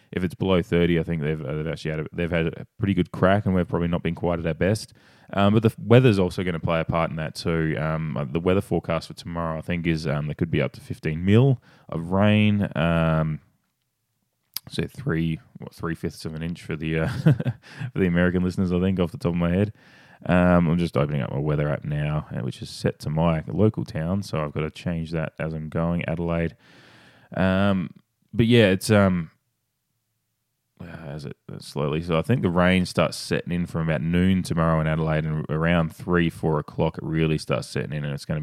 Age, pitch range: 20-39, 80-95 Hz